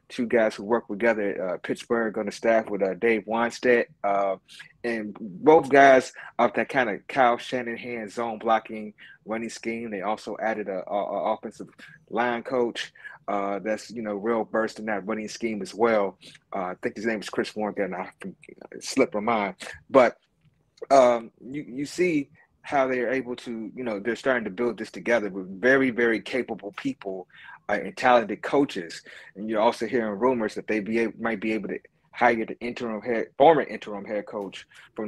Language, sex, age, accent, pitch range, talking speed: English, male, 30-49, American, 110-130 Hz, 195 wpm